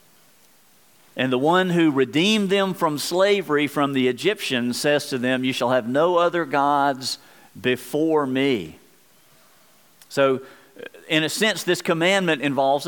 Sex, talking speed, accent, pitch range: male, 135 wpm, American, 125-170 Hz